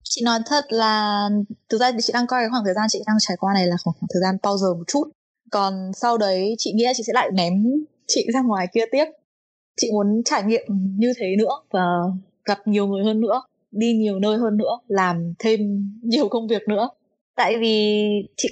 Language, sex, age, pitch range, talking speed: Vietnamese, female, 20-39, 190-235 Hz, 215 wpm